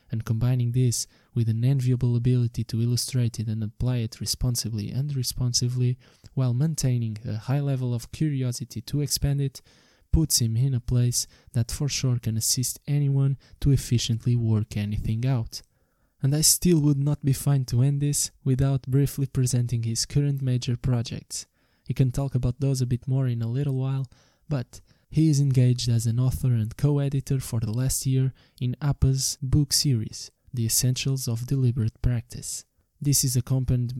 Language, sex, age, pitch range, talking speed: English, male, 20-39, 120-135 Hz, 170 wpm